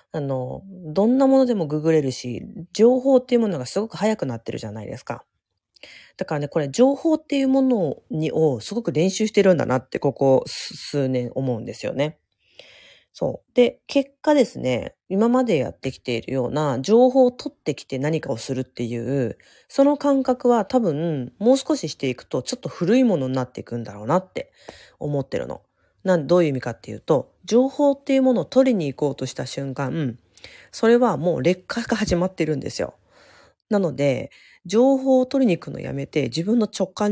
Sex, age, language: female, 30-49, Japanese